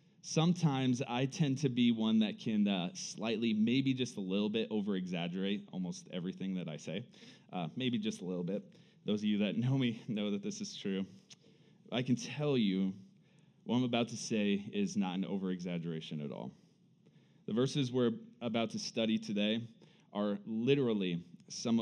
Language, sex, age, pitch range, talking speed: English, male, 20-39, 110-180 Hz, 175 wpm